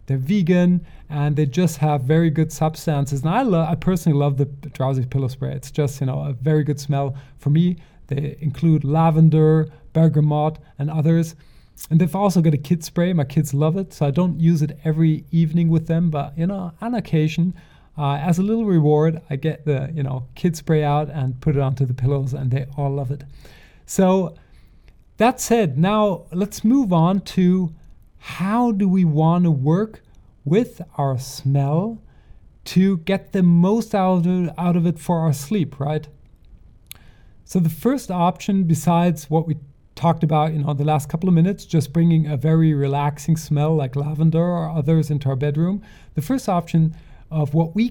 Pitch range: 145-175 Hz